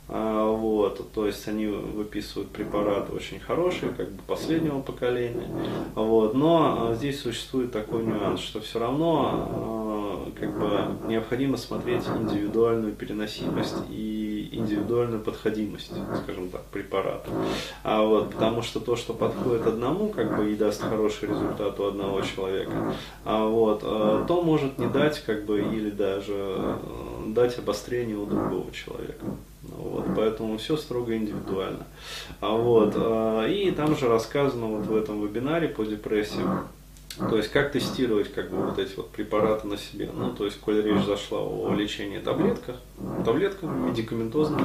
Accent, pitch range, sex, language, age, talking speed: native, 105-120 Hz, male, Russian, 20-39, 130 wpm